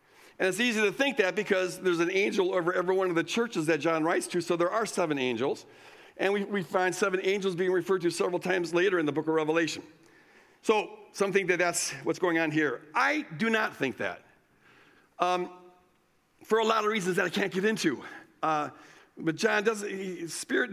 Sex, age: male, 50-69